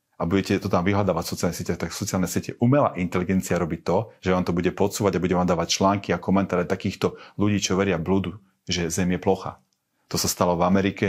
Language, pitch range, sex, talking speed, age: Slovak, 85-95 Hz, male, 225 wpm, 40-59